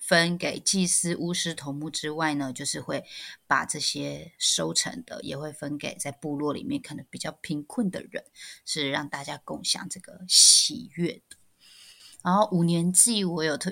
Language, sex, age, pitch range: Chinese, female, 20-39, 145-180 Hz